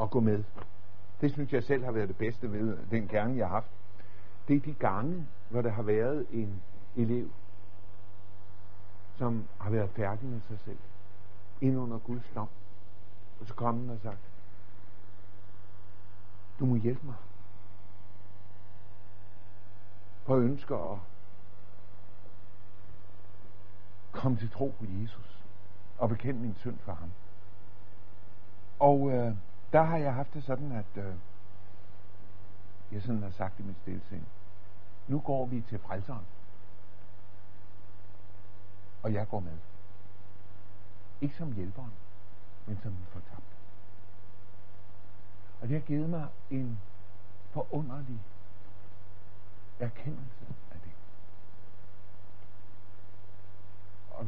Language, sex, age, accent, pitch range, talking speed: Danish, male, 60-79, native, 100-110 Hz, 115 wpm